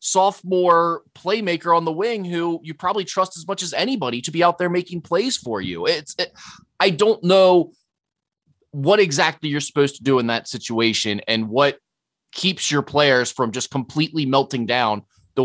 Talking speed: 175 wpm